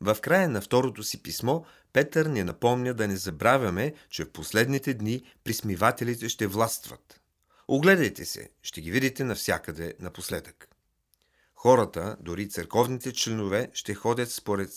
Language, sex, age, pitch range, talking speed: Bulgarian, male, 40-59, 95-140 Hz, 135 wpm